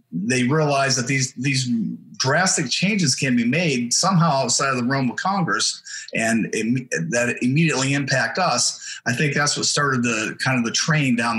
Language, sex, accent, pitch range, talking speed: English, male, American, 120-155 Hz, 185 wpm